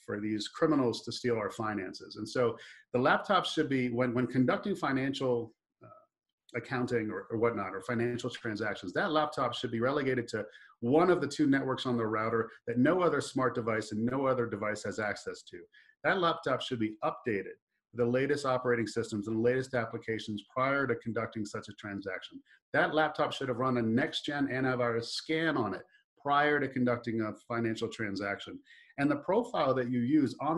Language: English